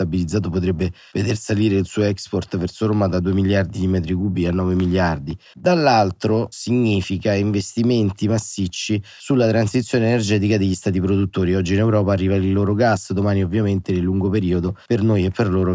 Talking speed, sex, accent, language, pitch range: 170 wpm, male, native, Italian, 95-110 Hz